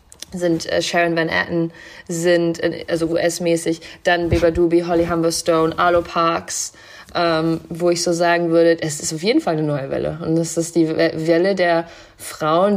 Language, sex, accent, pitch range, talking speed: German, female, German, 155-170 Hz, 165 wpm